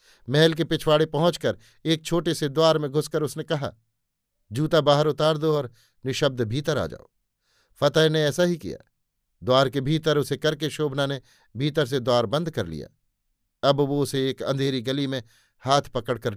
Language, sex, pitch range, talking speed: Hindi, male, 130-155 Hz, 175 wpm